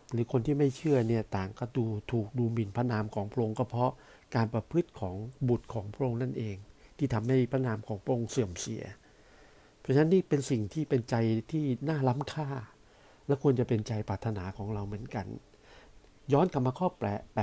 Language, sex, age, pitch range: Thai, male, 60-79, 105-130 Hz